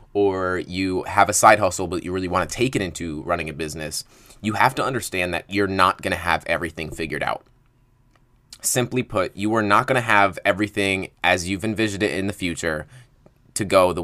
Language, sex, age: English, male, 20-39